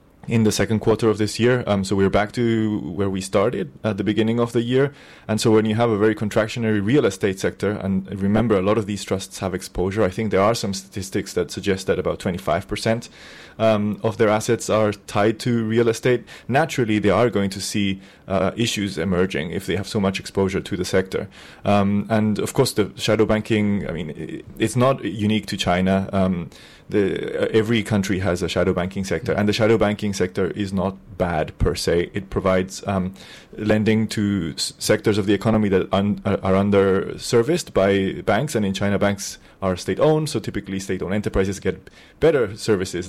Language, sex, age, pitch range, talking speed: English, male, 30-49, 95-110 Hz, 200 wpm